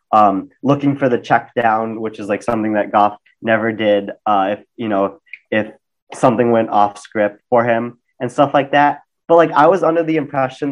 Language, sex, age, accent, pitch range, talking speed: English, male, 30-49, American, 110-130 Hz, 205 wpm